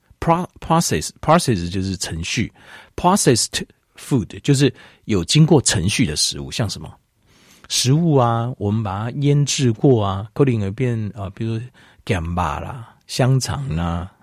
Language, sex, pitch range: Chinese, male, 95-145 Hz